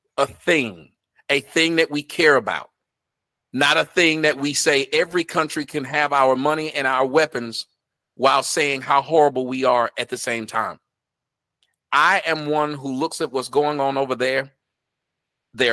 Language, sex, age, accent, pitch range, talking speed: English, male, 40-59, American, 140-160 Hz, 170 wpm